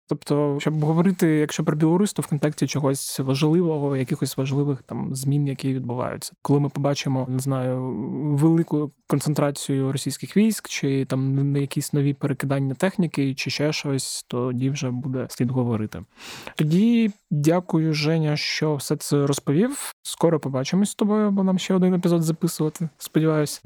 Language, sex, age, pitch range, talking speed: Ukrainian, male, 20-39, 140-165 Hz, 145 wpm